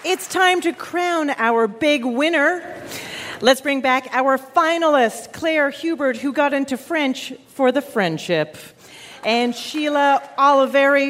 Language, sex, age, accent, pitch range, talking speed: English, female, 40-59, American, 225-290 Hz, 130 wpm